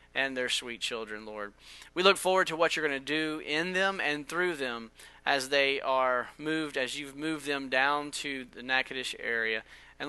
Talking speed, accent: 195 wpm, American